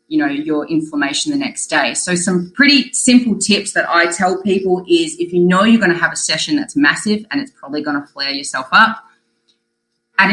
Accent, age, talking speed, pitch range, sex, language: Australian, 20-39, 215 wpm, 155-225 Hz, female, English